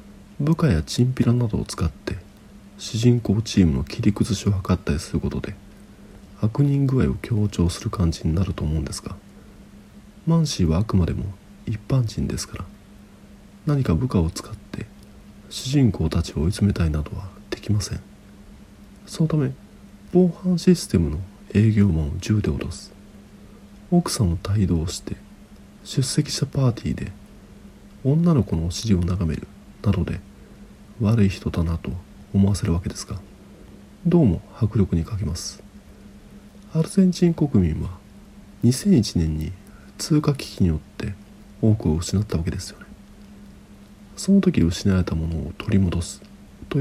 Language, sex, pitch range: Japanese, male, 95-115 Hz